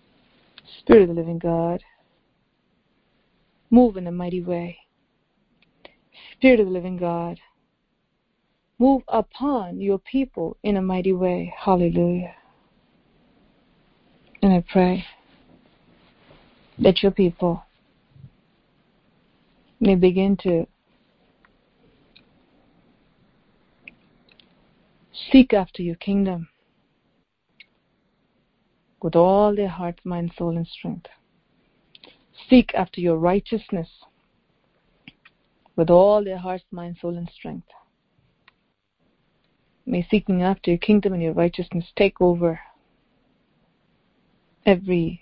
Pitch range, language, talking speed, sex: 170-200 Hz, English, 90 wpm, female